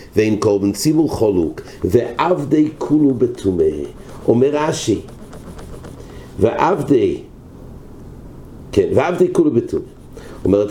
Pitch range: 115-160 Hz